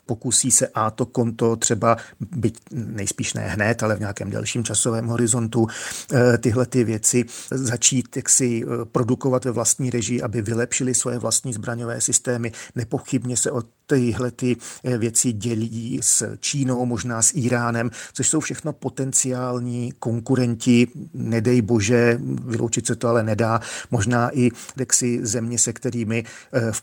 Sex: male